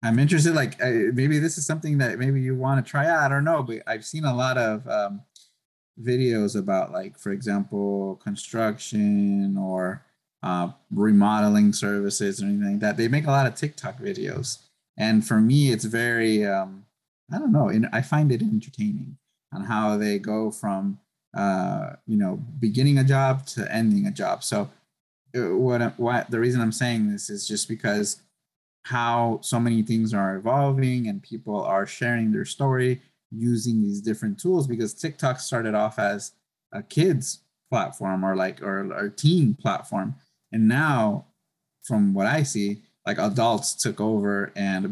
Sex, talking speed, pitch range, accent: male, 170 wpm, 100-135 Hz, American